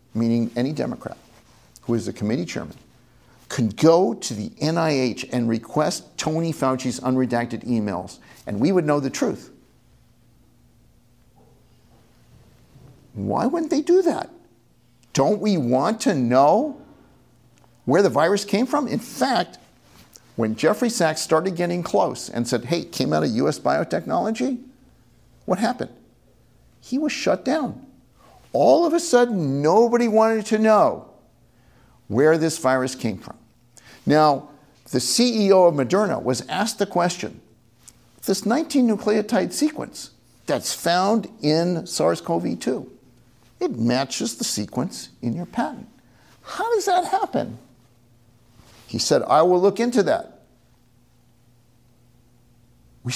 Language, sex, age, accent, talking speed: English, male, 50-69, American, 125 wpm